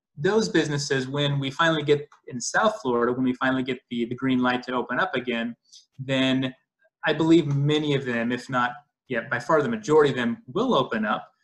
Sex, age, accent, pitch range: male, 20-39, American, 120-150 Hz